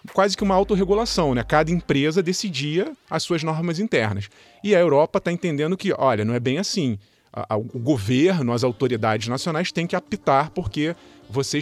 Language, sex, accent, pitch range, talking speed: Portuguese, male, Brazilian, 120-155 Hz, 170 wpm